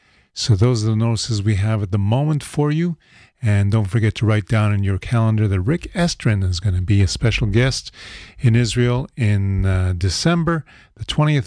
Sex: male